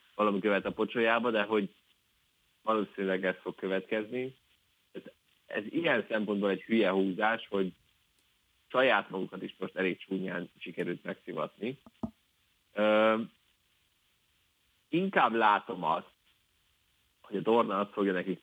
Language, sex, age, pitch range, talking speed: Hungarian, male, 30-49, 95-110 Hz, 115 wpm